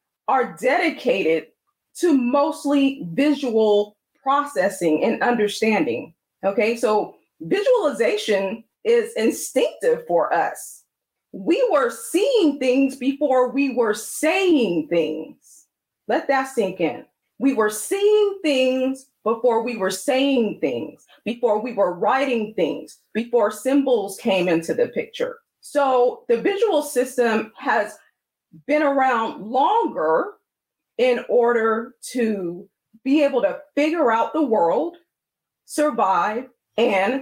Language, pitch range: English, 215-310 Hz